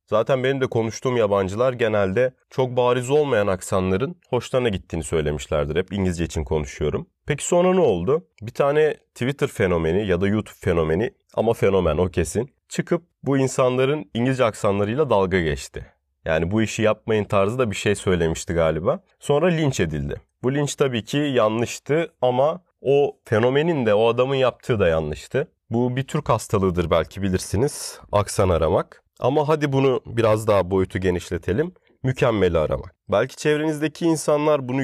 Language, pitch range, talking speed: Turkish, 100-140 Hz, 150 wpm